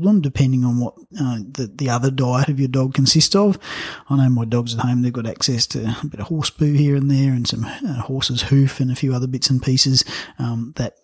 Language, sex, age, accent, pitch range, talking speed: English, male, 30-49, Australian, 115-135 Hz, 245 wpm